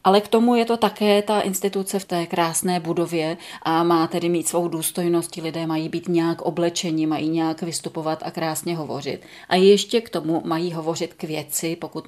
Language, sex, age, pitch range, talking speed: Czech, female, 30-49, 160-180 Hz, 195 wpm